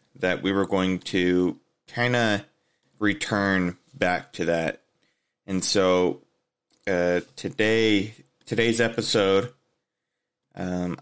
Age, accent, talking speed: 30-49, American, 100 wpm